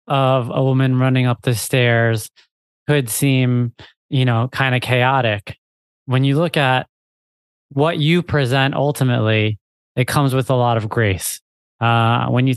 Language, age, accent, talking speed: English, 30-49, American, 155 wpm